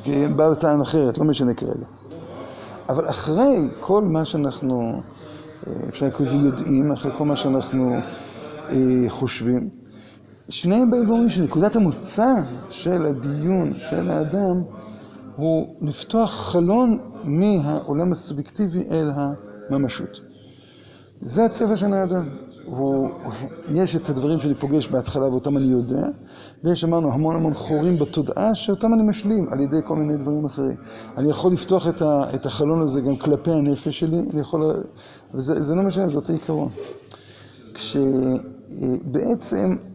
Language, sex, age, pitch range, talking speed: Hebrew, male, 50-69, 135-180 Hz, 120 wpm